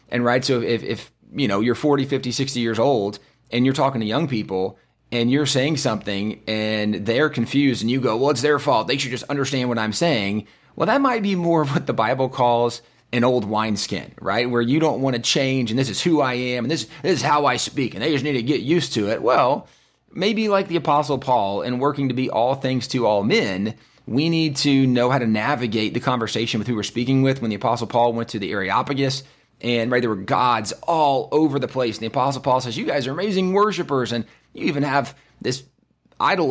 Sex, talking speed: male, 240 wpm